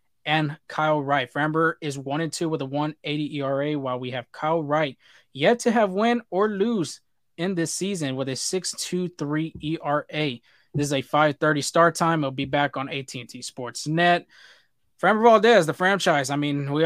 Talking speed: 180 wpm